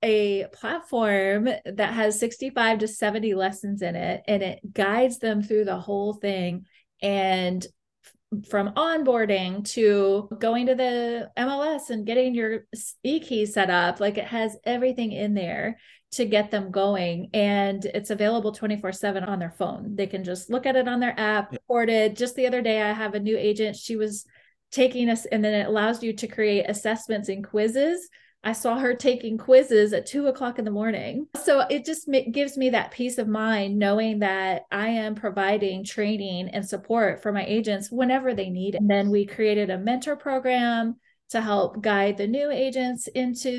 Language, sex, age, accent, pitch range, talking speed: English, female, 30-49, American, 200-240 Hz, 185 wpm